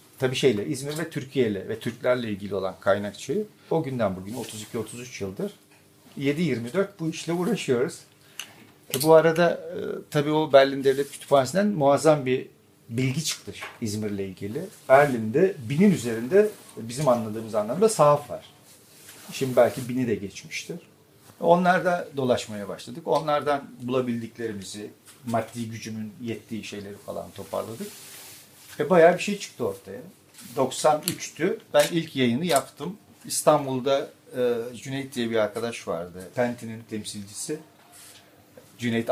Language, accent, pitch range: Turkish, native, 110-145 Hz